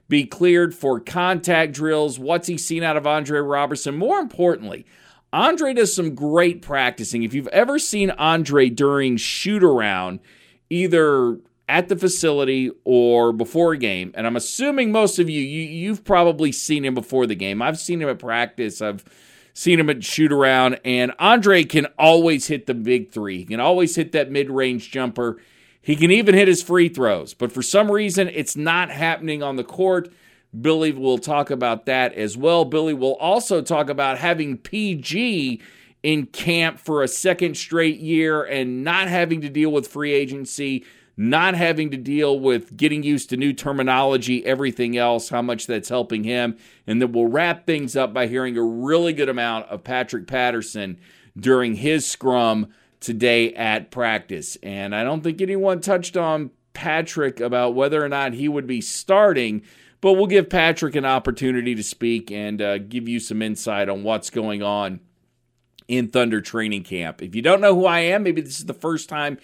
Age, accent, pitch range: 40-59, American, 125-170 Hz